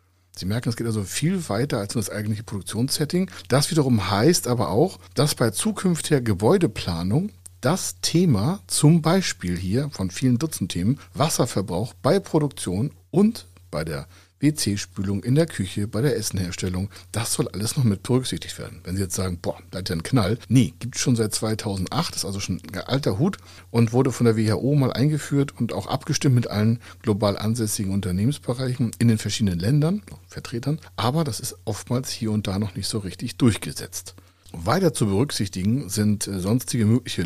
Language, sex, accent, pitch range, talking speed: German, male, German, 95-140 Hz, 180 wpm